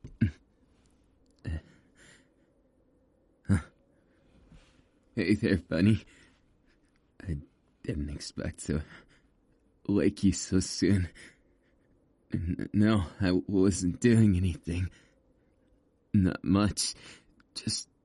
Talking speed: 70 wpm